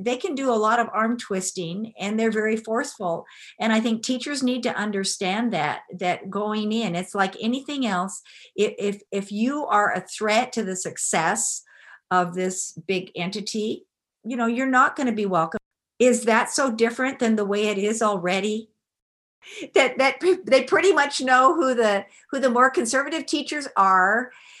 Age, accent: 50-69, American